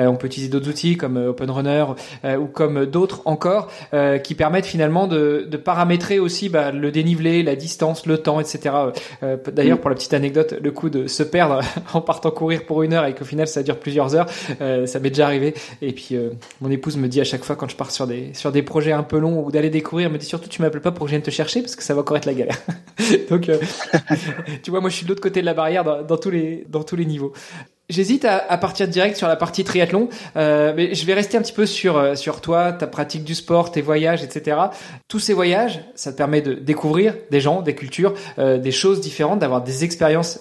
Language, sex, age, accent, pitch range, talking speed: French, male, 20-39, French, 145-180 Hz, 240 wpm